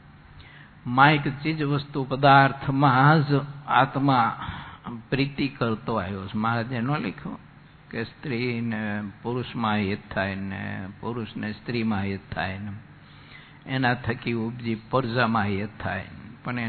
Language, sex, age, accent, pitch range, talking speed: English, male, 50-69, Indian, 110-140 Hz, 105 wpm